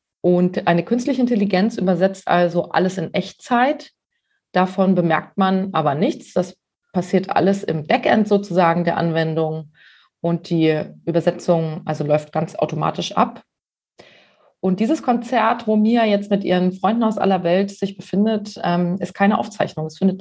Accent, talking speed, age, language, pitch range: German, 145 wpm, 30-49, German, 170-205 Hz